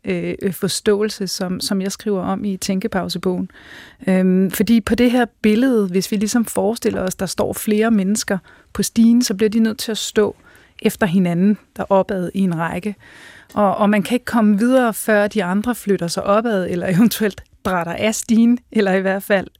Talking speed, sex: 190 wpm, female